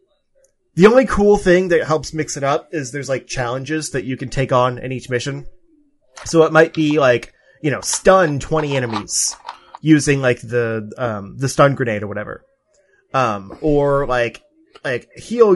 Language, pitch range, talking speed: English, 125-165 Hz, 175 wpm